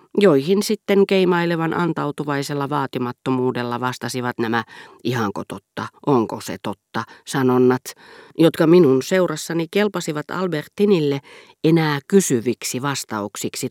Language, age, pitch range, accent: Finnish, 40-59, 125-165 Hz, native